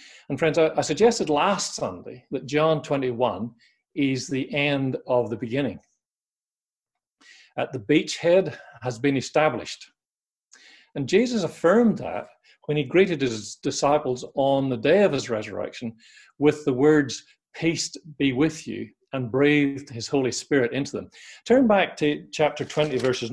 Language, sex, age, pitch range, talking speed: English, male, 40-59, 125-155 Hz, 145 wpm